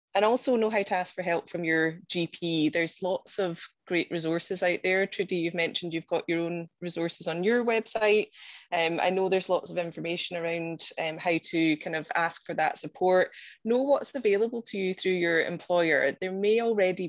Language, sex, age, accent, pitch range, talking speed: English, female, 20-39, British, 170-200 Hz, 200 wpm